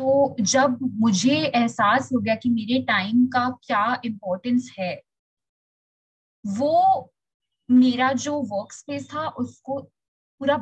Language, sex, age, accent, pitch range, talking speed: Hindi, female, 20-39, native, 235-290 Hz, 120 wpm